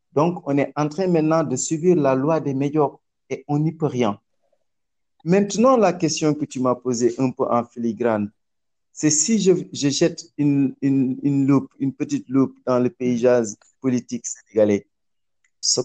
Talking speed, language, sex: 170 wpm, English, male